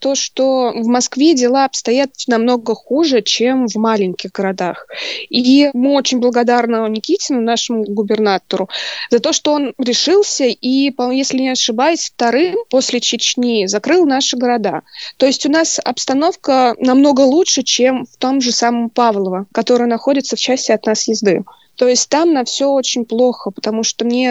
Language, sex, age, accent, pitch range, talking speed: Russian, female, 20-39, native, 225-275 Hz, 160 wpm